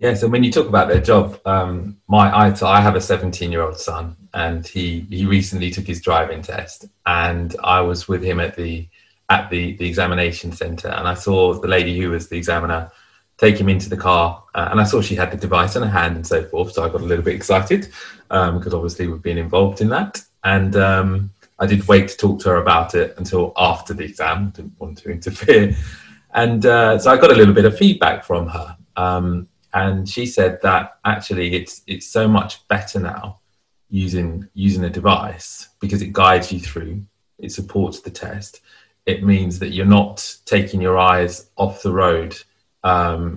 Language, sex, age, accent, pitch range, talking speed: English, male, 30-49, British, 90-100 Hz, 210 wpm